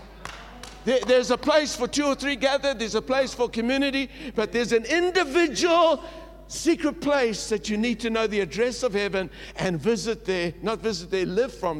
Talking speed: 185 wpm